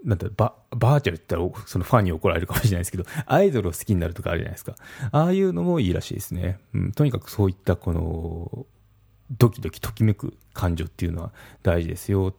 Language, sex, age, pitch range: Japanese, male, 30-49, 90-115 Hz